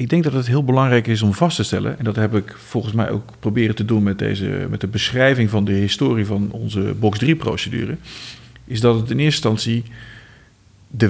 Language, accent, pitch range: Dutch, Dutch, 110-140 Hz